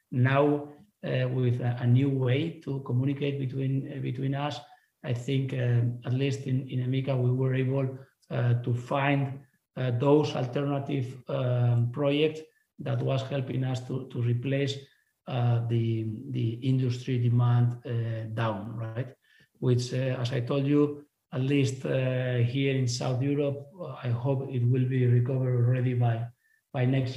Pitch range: 125-140 Hz